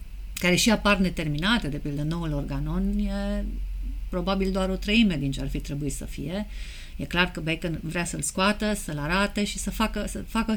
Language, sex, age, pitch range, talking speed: Romanian, female, 40-59, 150-200 Hz, 195 wpm